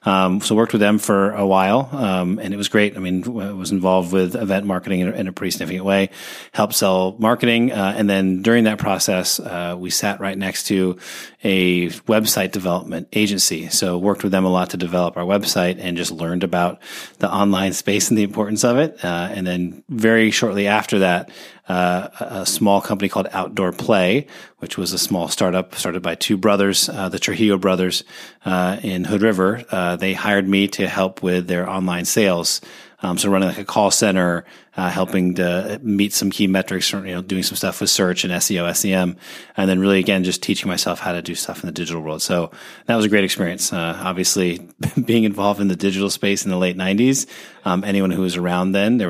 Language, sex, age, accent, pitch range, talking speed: English, male, 30-49, American, 90-100 Hz, 215 wpm